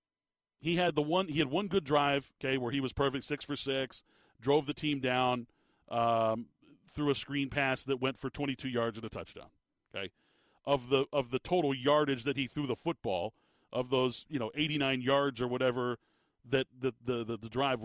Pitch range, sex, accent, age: 125-150 Hz, male, American, 40-59